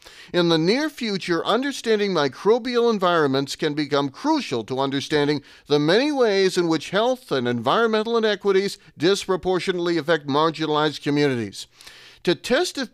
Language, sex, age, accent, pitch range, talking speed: English, male, 40-59, American, 145-205 Hz, 130 wpm